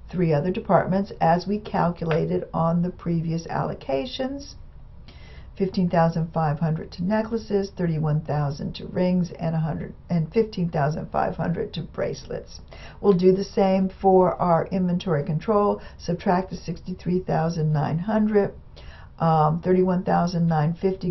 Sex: female